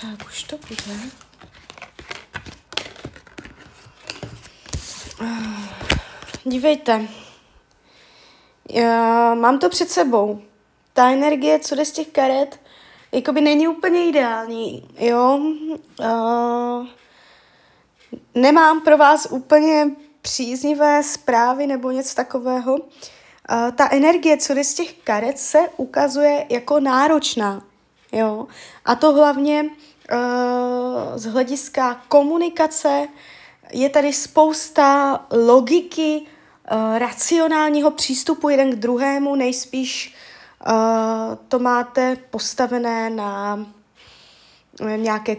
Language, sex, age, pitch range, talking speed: Czech, female, 20-39, 230-295 Hz, 80 wpm